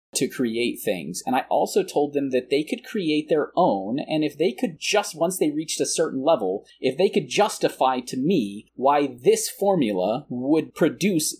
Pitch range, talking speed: 125-175 Hz, 190 wpm